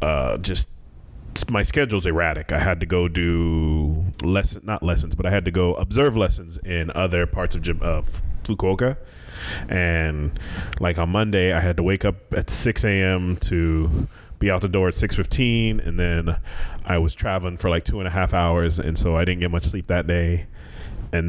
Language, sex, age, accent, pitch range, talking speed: English, male, 30-49, American, 85-100 Hz, 190 wpm